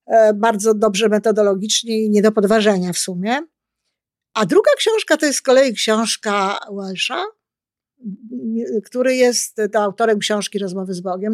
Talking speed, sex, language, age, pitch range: 130 wpm, female, Polish, 50-69, 210-270 Hz